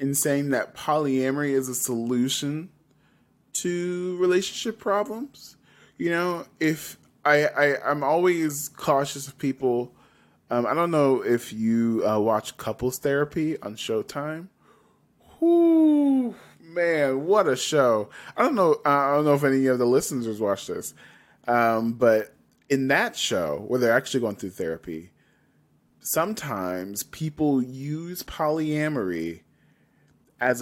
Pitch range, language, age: 115-165 Hz, English, 20-39